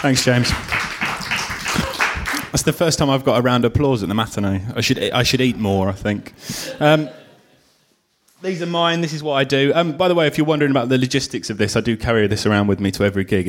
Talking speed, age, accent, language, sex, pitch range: 240 wpm, 20-39, British, English, male, 105-135 Hz